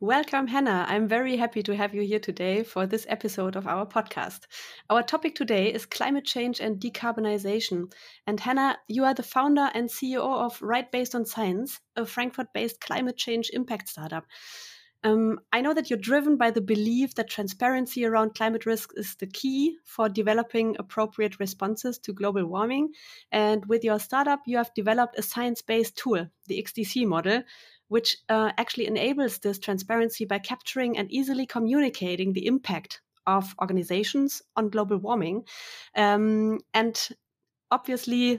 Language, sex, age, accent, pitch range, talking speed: English, female, 30-49, German, 210-250 Hz, 160 wpm